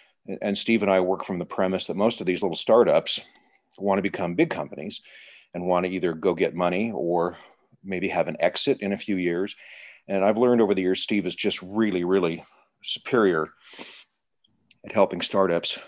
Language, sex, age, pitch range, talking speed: English, male, 50-69, 90-115 Hz, 190 wpm